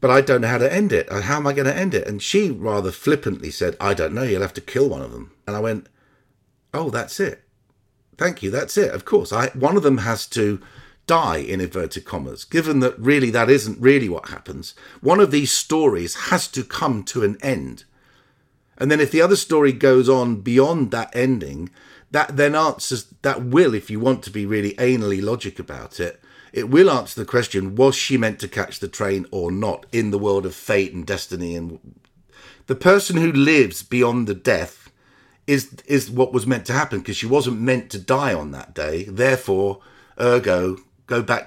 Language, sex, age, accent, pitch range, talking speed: English, male, 50-69, British, 100-130 Hz, 210 wpm